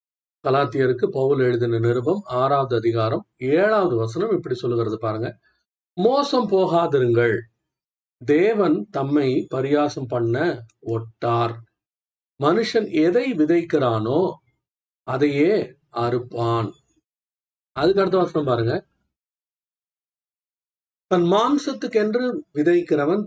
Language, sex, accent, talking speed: Tamil, male, native, 75 wpm